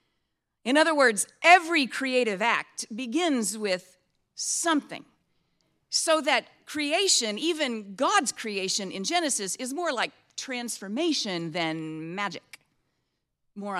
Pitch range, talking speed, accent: 195-300 Hz, 105 wpm, American